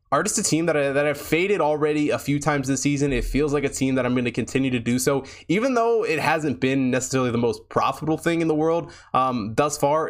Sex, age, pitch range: male, 20-39, 115-145 Hz